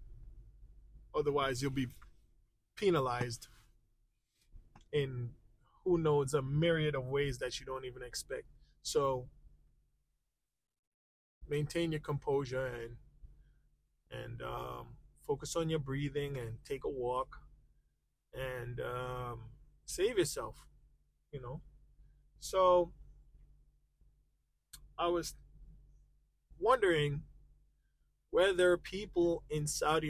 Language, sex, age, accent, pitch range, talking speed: English, male, 20-39, American, 115-155 Hz, 90 wpm